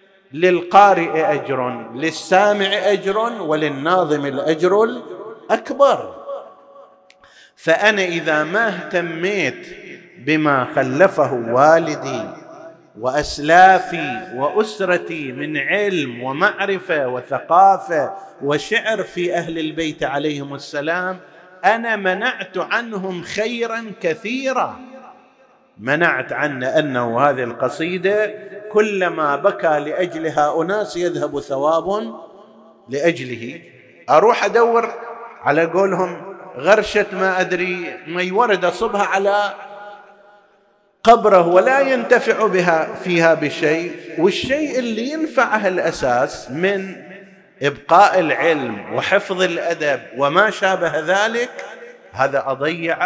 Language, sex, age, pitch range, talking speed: Arabic, male, 50-69, 150-205 Hz, 85 wpm